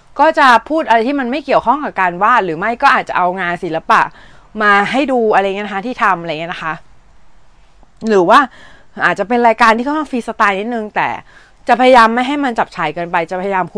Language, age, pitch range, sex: Thai, 20-39, 180-255 Hz, female